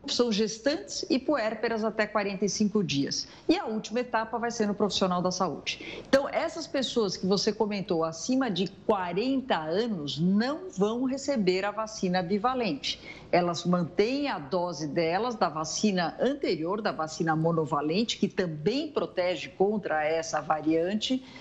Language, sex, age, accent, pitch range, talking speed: Portuguese, female, 50-69, Brazilian, 175-235 Hz, 140 wpm